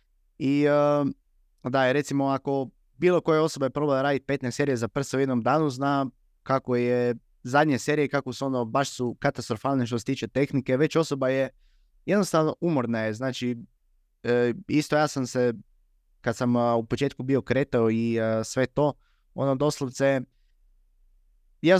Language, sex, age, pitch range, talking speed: Croatian, male, 20-39, 120-145 Hz, 150 wpm